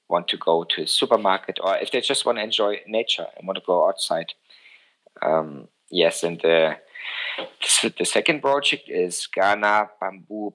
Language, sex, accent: English, male, German